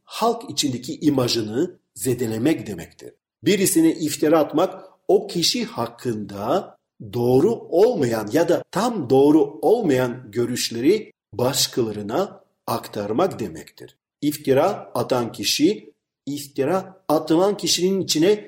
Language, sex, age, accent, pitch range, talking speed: Turkish, male, 50-69, native, 120-200 Hz, 95 wpm